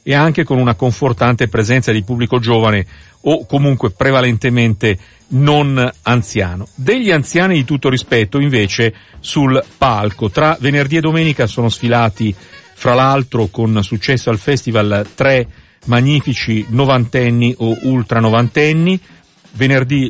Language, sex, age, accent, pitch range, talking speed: Italian, male, 50-69, native, 110-140 Hz, 120 wpm